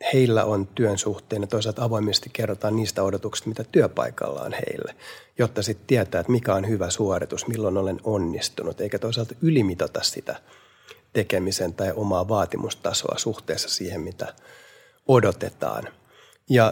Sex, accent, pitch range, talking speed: male, native, 95-115 Hz, 135 wpm